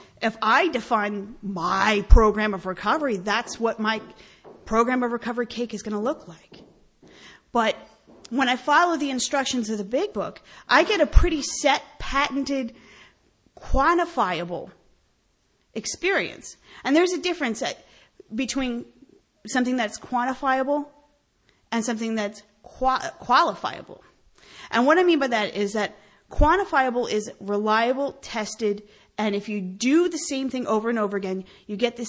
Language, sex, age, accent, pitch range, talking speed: English, female, 30-49, American, 210-270 Hz, 145 wpm